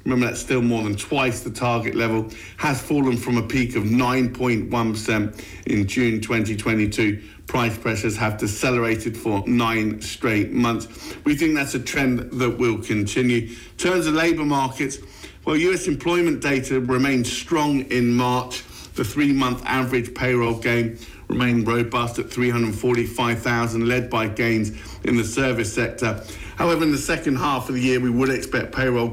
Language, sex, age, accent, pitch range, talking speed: English, male, 50-69, British, 110-130 Hz, 155 wpm